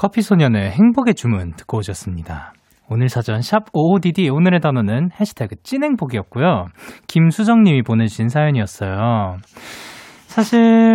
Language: Korean